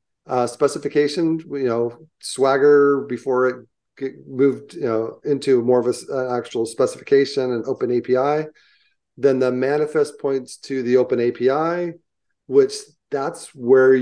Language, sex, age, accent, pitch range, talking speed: English, male, 40-59, American, 120-150 Hz, 135 wpm